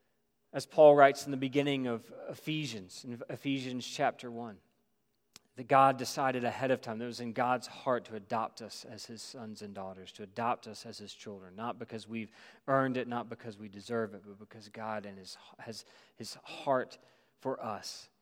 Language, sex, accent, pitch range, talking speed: English, male, American, 115-135 Hz, 190 wpm